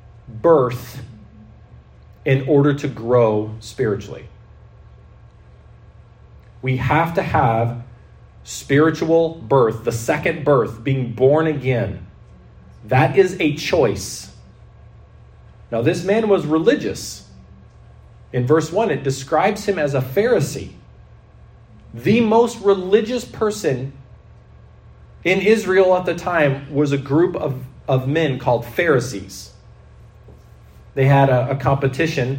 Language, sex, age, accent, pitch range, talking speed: English, male, 40-59, American, 115-165 Hz, 105 wpm